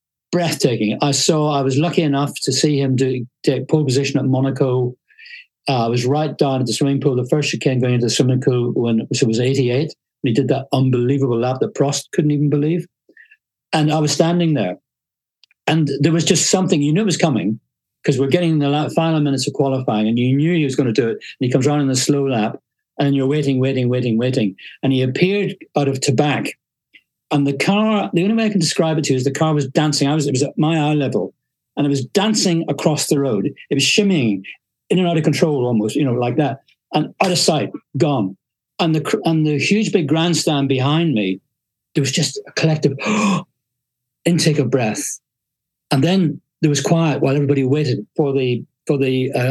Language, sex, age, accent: English, male, 60-79, British